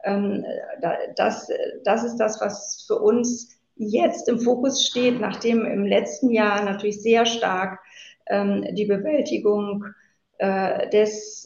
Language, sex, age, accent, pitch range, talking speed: German, female, 50-69, German, 200-235 Hz, 110 wpm